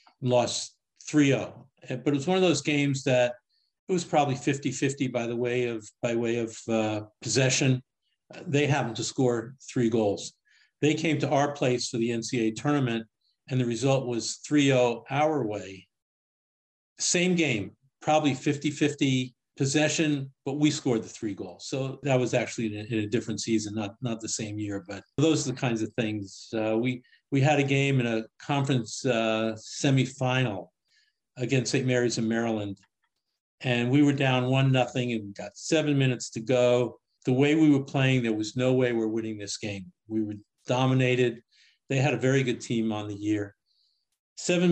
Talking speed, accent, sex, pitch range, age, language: 180 wpm, American, male, 115-140 Hz, 50-69, English